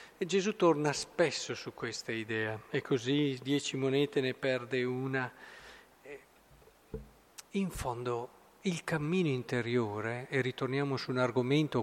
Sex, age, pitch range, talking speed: male, 50-69, 130-185 Hz, 115 wpm